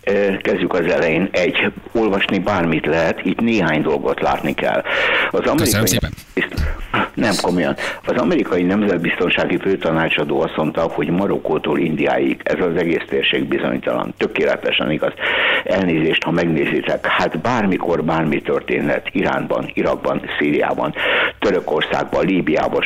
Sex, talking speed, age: male, 115 wpm, 60-79